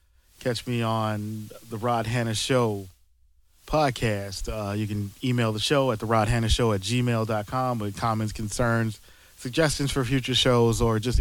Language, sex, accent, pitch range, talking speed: English, male, American, 100-115 Hz, 160 wpm